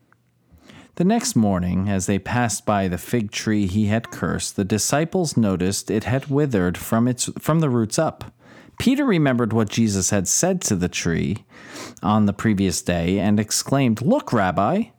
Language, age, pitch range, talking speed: English, 40-59, 105-155 Hz, 170 wpm